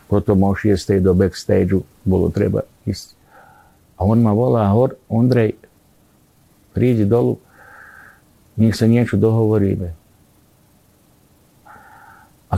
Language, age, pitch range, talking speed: Slovak, 60-79, 90-110 Hz, 95 wpm